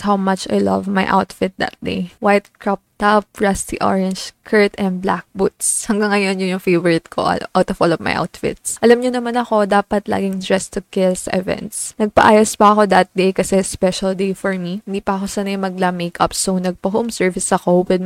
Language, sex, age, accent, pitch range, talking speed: Filipino, female, 20-39, native, 185-215 Hz, 205 wpm